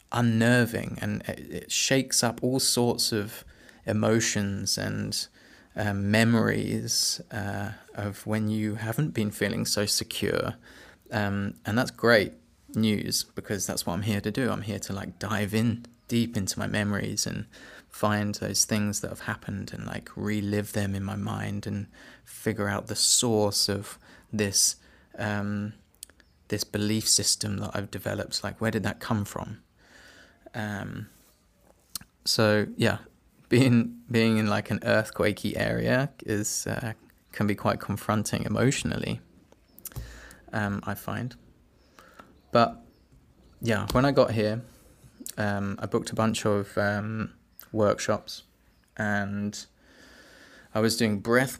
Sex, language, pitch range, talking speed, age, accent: male, English, 100-115 Hz, 135 wpm, 20-39, British